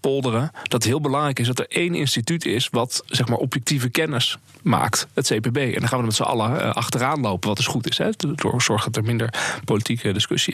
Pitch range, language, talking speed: 115-135 Hz, Dutch, 235 wpm